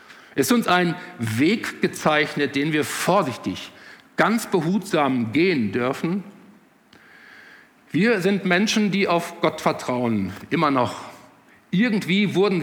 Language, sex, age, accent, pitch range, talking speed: German, male, 50-69, German, 140-185 Hz, 110 wpm